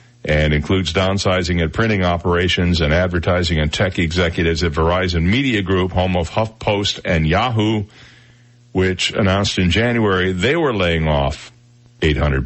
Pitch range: 85-120 Hz